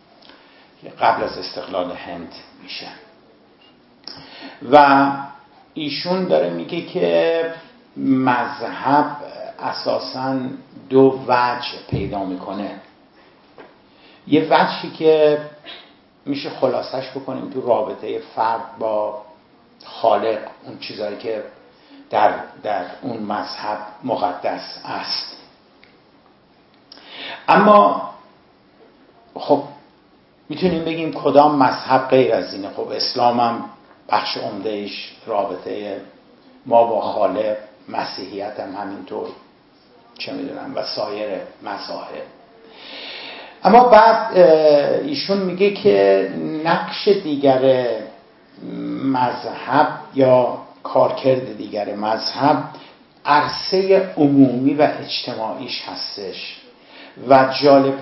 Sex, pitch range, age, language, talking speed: male, 120-160 Hz, 50-69, Persian, 85 wpm